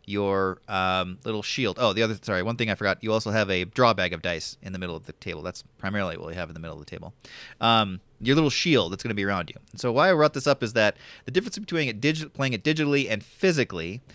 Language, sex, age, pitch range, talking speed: English, male, 30-49, 105-135 Hz, 265 wpm